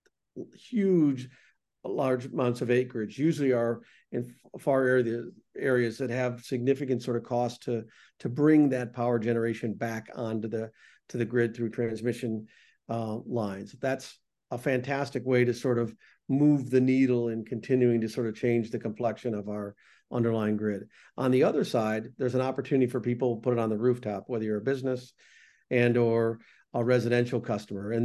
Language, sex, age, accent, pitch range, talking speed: English, male, 50-69, American, 115-130 Hz, 170 wpm